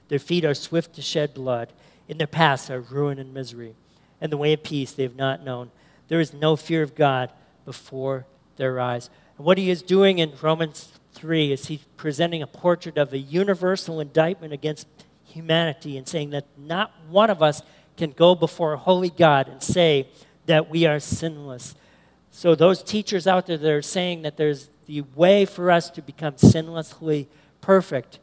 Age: 50-69